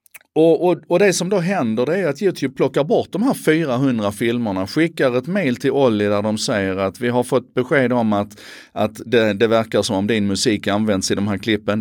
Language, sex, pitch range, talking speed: Swedish, male, 95-135 Hz, 230 wpm